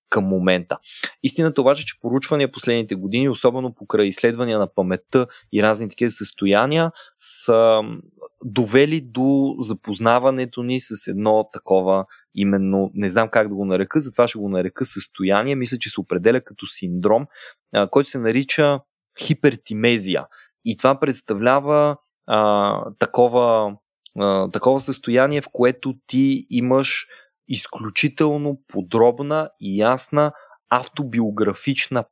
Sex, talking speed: male, 120 wpm